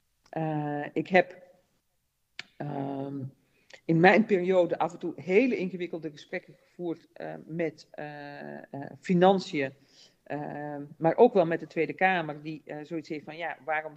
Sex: female